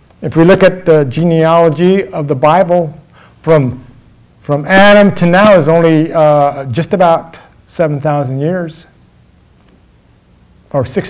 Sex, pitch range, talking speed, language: male, 135-165 Hz, 125 wpm, English